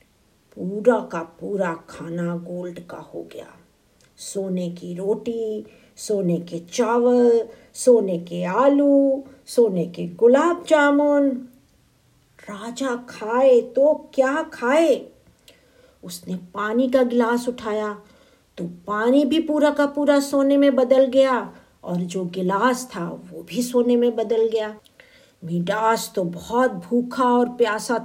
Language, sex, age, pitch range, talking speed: Hindi, female, 50-69, 190-280 Hz, 120 wpm